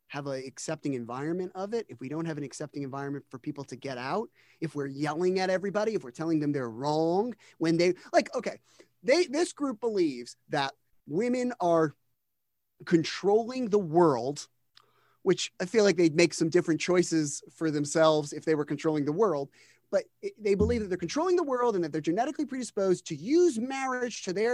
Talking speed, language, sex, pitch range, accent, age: 195 wpm, English, male, 155-240 Hz, American, 30-49